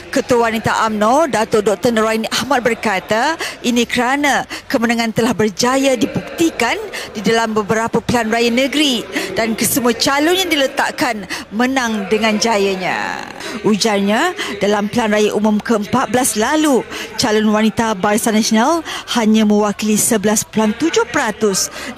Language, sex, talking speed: Malay, female, 115 wpm